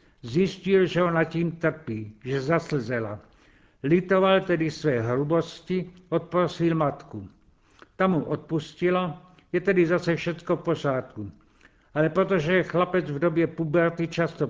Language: Czech